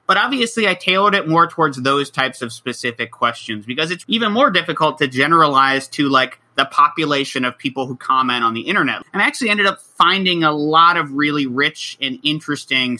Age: 30-49